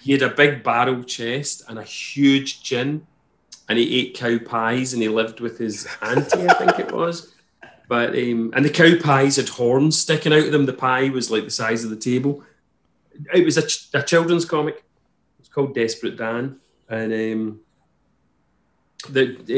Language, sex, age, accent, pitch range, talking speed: English, male, 30-49, British, 115-140 Hz, 185 wpm